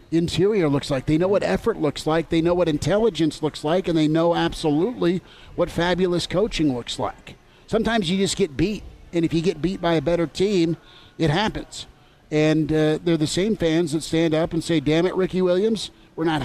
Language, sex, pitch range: English, male, 145-170 Hz